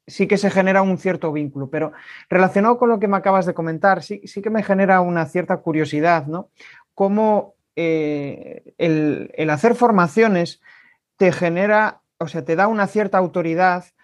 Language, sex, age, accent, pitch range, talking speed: Spanish, male, 30-49, Spanish, 155-200 Hz, 170 wpm